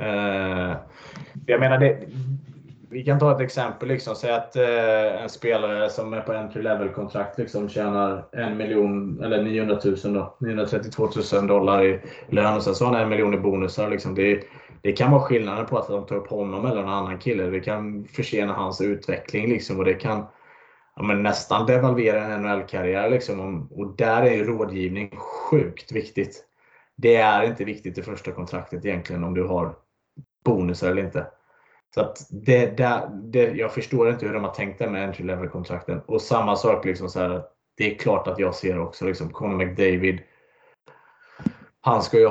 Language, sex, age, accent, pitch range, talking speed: Swedish, male, 20-39, Norwegian, 95-125 Hz, 185 wpm